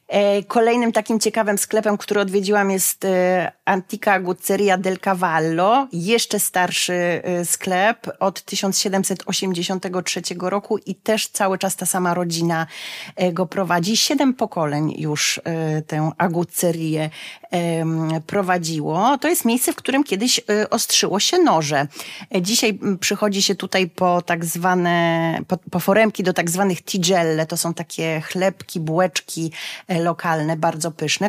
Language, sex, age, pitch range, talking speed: Polish, female, 30-49, 170-210 Hz, 120 wpm